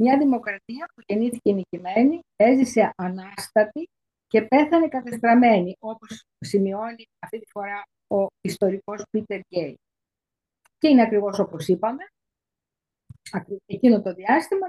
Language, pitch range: Greek, 195-250 Hz